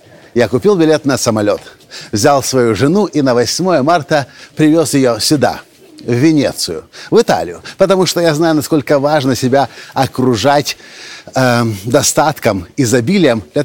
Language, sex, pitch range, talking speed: Russian, male, 120-160 Hz, 135 wpm